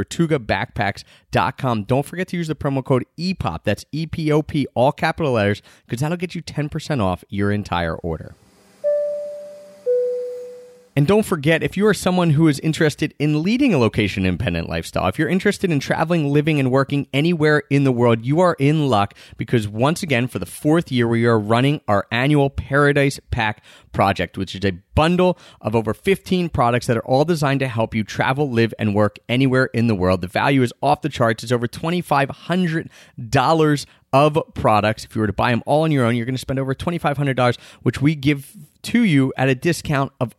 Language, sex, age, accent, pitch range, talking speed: English, male, 30-49, American, 115-155 Hz, 190 wpm